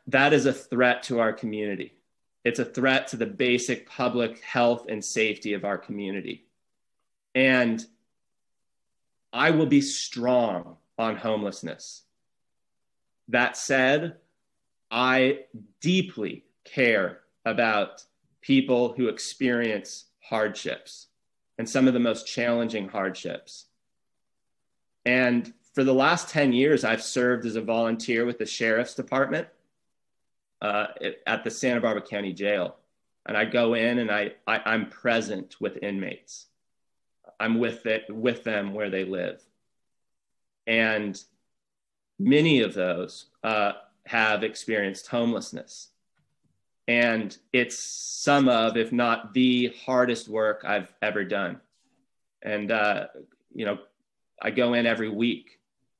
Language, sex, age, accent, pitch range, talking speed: English, male, 30-49, American, 105-125 Hz, 120 wpm